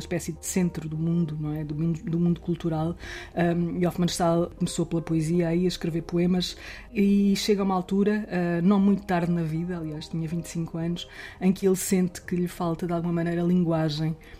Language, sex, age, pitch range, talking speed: Portuguese, female, 20-39, 155-180 Hz, 205 wpm